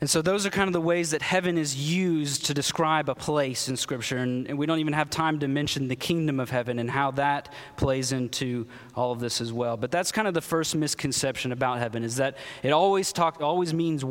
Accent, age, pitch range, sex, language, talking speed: American, 20-39, 130-160 Hz, male, English, 245 wpm